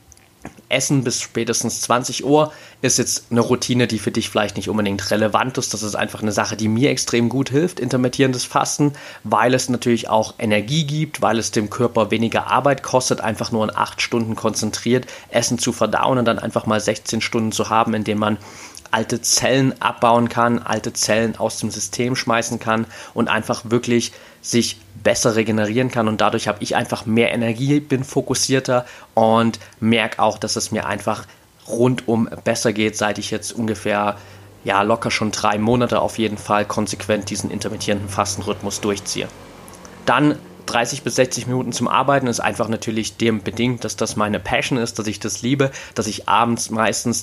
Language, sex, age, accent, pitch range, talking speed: German, male, 30-49, German, 110-125 Hz, 180 wpm